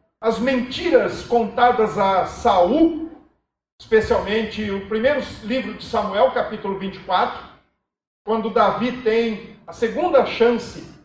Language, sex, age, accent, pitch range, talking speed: Portuguese, male, 50-69, Brazilian, 220-300 Hz, 105 wpm